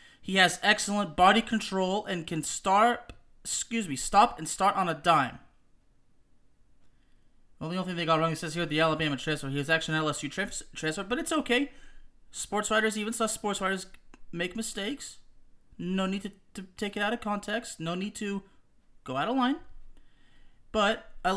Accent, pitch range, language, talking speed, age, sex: American, 170-220 Hz, English, 185 wpm, 30-49, male